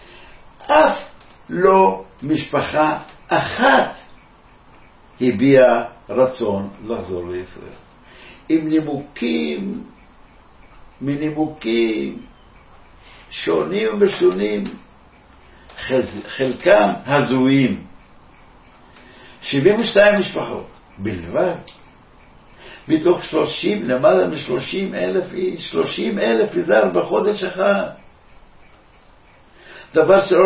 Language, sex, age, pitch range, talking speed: Hebrew, male, 60-79, 100-155 Hz, 65 wpm